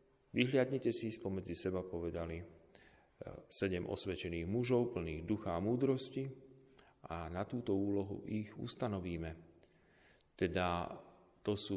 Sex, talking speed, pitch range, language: male, 105 wpm, 85-110 Hz, Slovak